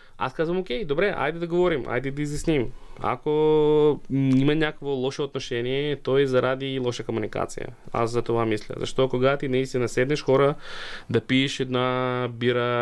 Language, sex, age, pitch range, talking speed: Bulgarian, male, 20-39, 115-140 Hz, 160 wpm